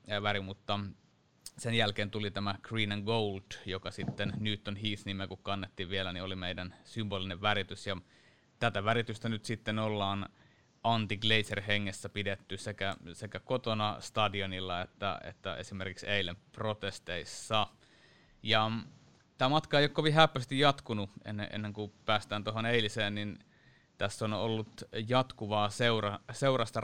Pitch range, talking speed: 95-110 Hz, 130 wpm